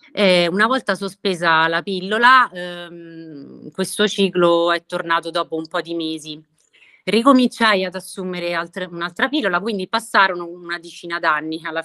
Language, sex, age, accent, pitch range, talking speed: Italian, female, 30-49, native, 160-190 Hz, 140 wpm